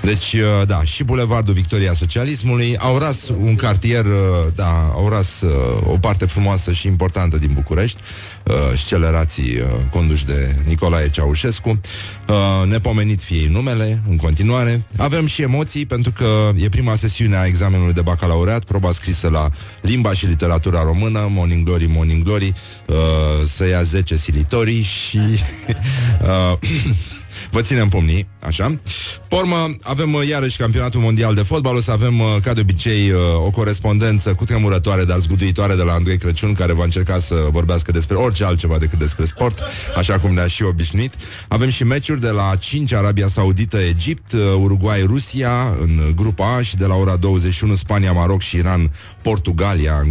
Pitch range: 85-110 Hz